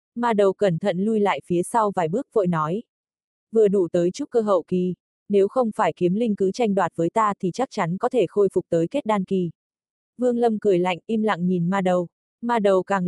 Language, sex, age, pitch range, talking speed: Vietnamese, female, 20-39, 180-220 Hz, 240 wpm